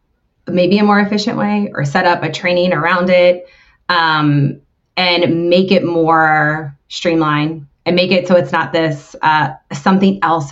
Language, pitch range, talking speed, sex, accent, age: English, 155-200 Hz, 160 wpm, female, American, 20-39